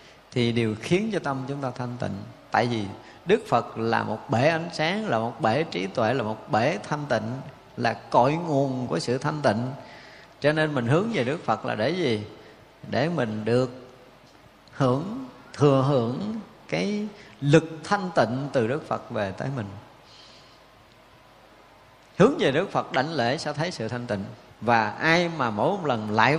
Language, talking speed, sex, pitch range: Vietnamese, 175 wpm, male, 115-155 Hz